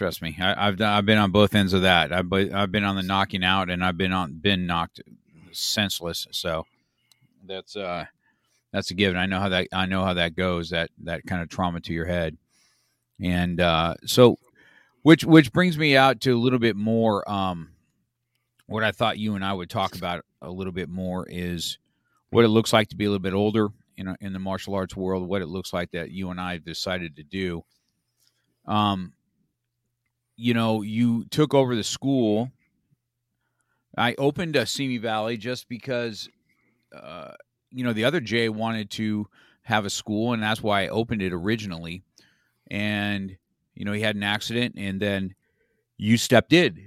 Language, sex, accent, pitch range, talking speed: English, male, American, 95-120 Hz, 185 wpm